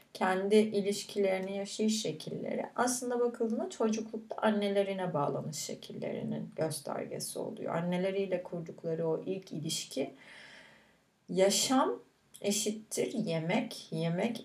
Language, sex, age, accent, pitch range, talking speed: Turkish, female, 30-49, native, 180-225 Hz, 85 wpm